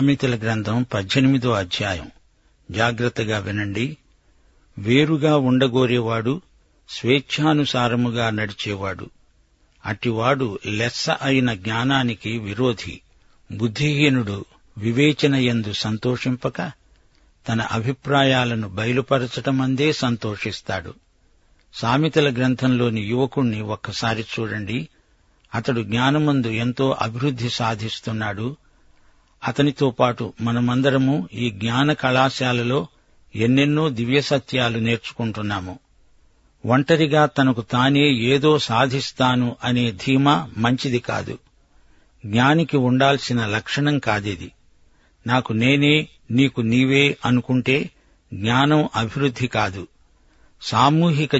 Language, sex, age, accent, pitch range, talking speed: Telugu, male, 60-79, native, 110-135 Hz, 75 wpm